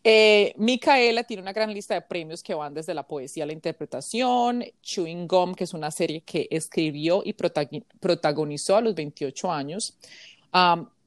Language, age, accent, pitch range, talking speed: Spanish, 30-49, Colombian, 165-205 Hz, 175 wpm